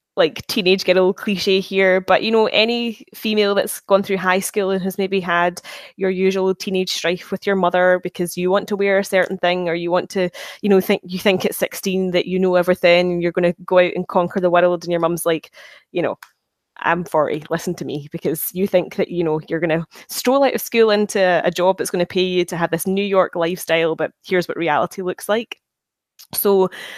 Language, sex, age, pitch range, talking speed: English, female, 10-29, 175-205 Hz, 230 wpm